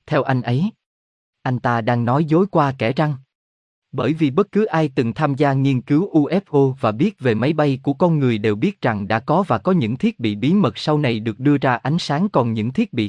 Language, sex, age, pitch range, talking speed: Vietnamese, male, 20-39, 115-160 Hz, 245 wpm